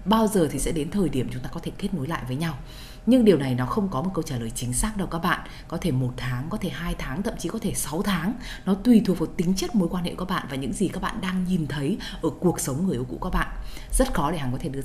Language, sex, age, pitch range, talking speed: Vietnamese, female, 20-39, 130-180 Hz, 325 wpm